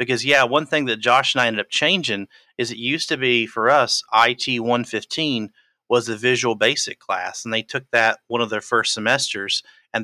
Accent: American